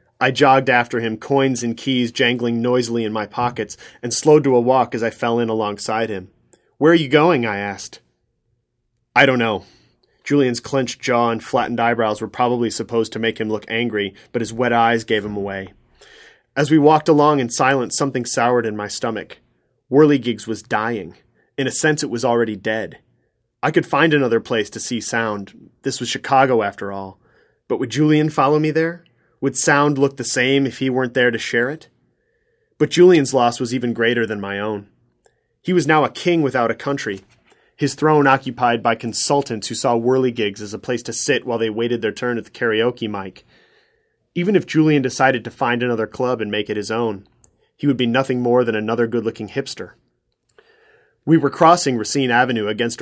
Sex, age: male, 30-49